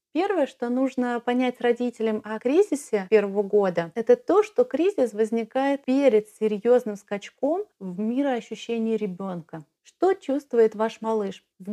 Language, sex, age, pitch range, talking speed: Russian, female, 30-49, 210-255 Hz, 130 wpm